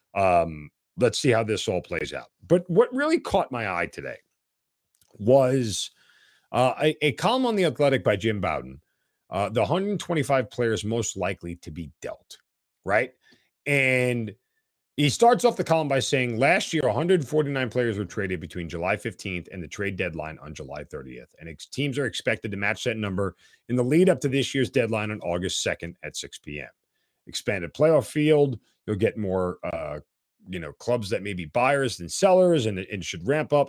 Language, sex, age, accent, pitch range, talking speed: English, male, 40-59, American, 105-145 Hz, 185 wpm